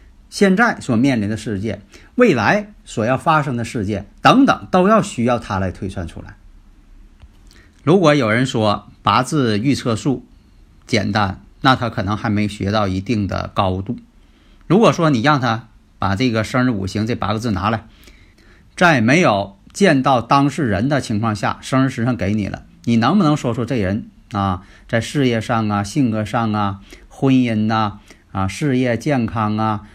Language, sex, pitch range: Chinese, male, 100-135 Hz